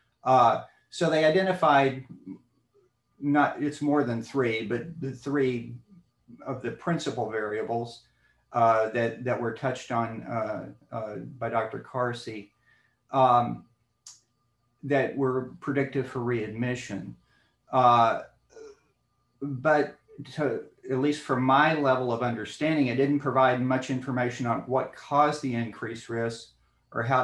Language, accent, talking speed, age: English, American, 120 wpm, 50-69